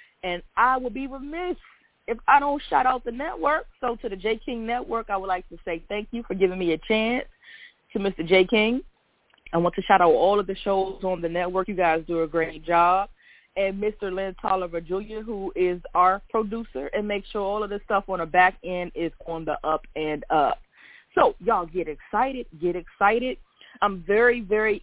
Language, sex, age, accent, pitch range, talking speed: English, female, 20-39, American, 175-220 Hz, 210 wpm